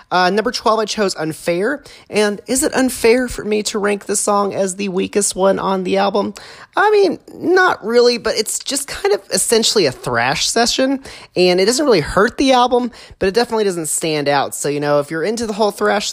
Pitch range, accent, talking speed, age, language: 155-230 Hz, American, 215 wpm, 30-49, English